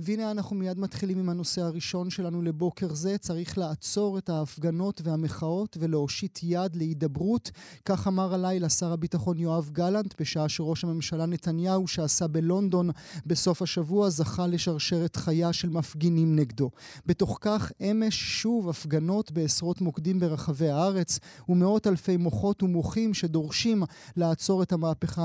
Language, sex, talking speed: Hebrew, male, 135 wpm